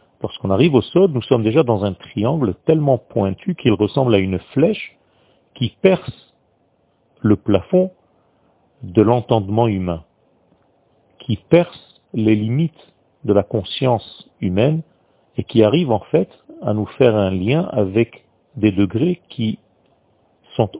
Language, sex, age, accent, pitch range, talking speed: French, male, 40-59, French, 100-130 Hz, 135 wpm